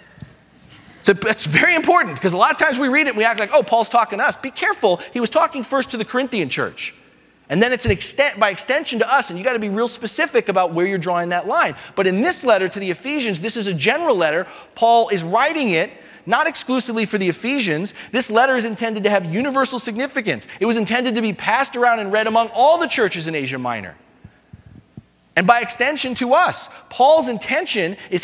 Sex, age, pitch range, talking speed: male, 40-59, 190-255 Hz, 225 wpm